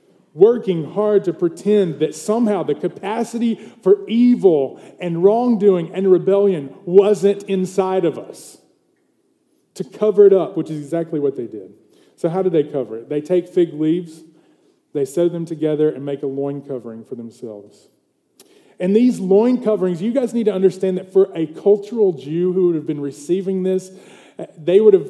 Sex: male